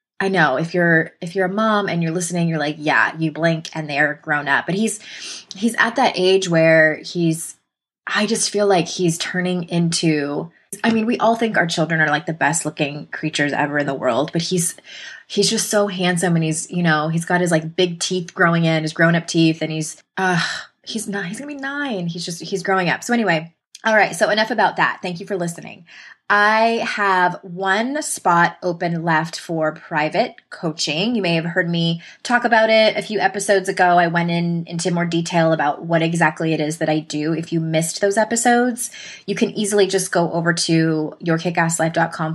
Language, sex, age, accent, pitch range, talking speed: English, female, 20-39, American, 160-195 Hz, 210 wpm